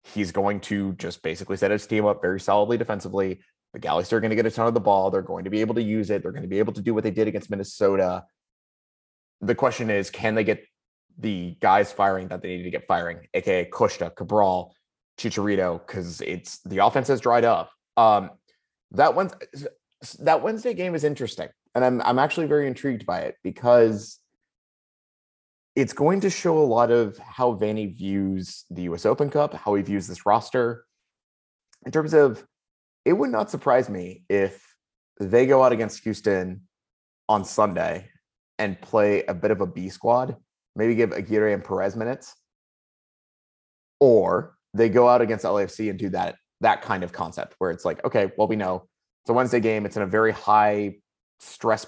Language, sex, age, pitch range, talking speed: English, male, 20-39, 100-120 Hz, 190 wpm